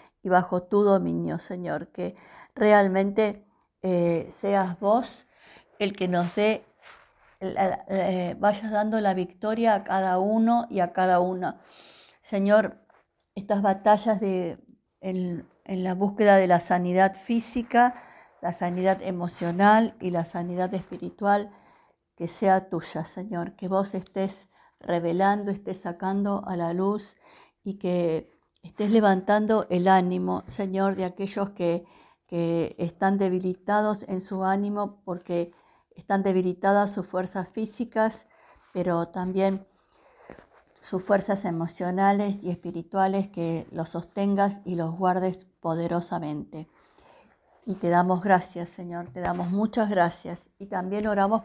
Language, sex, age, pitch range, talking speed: Spanish, female, 50-69, 180-205 Hz, 120 wpm